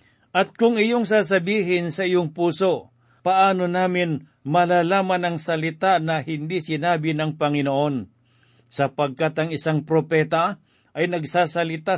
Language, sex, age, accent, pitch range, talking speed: Filipino, male, 50-69, native, 150-190 Hz, 115 wpm